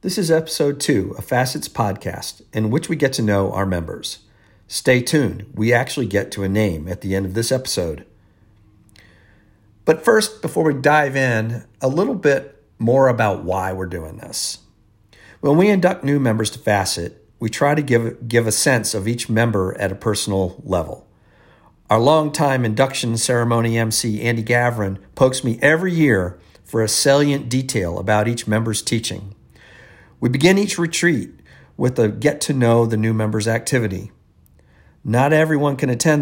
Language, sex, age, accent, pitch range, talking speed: English, male, 50-69, American, 105-130 Hz, 165 wpm